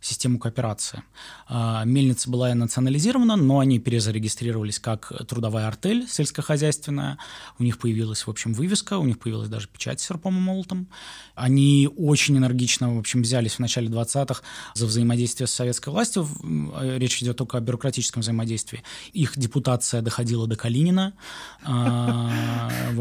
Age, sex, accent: 20-39, male, native